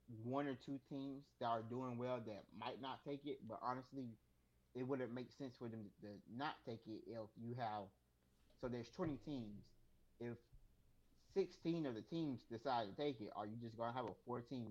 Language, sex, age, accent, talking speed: English, male, 30-49, American, 205 wpm